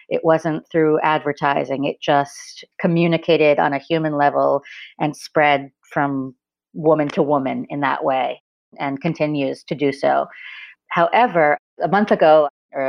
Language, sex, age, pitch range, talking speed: English, female, 40-59, 140-165 Hz, 140 wpm